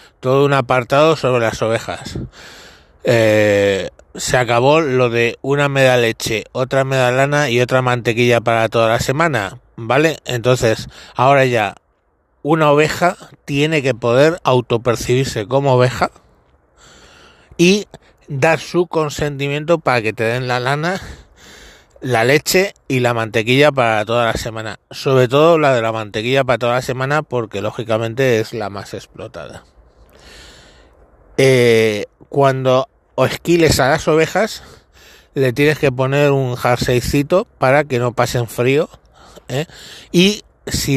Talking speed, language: 135 wpm, Spanish